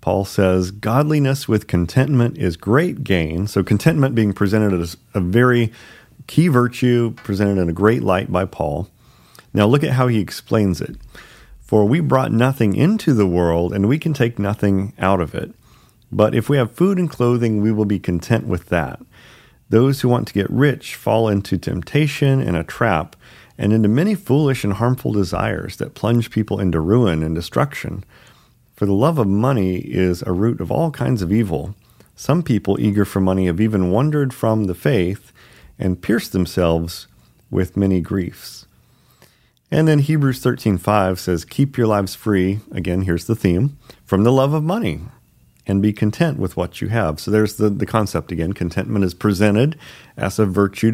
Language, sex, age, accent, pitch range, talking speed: English, male, 40-59, American, 95-125 Hz, 180 wpm